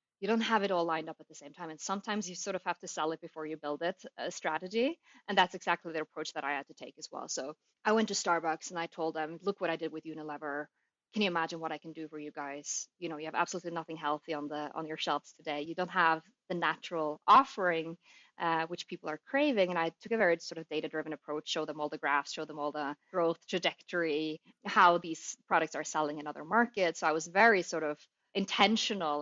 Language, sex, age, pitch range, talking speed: English, female, 20-39, 155-185 Hz, 250 wpm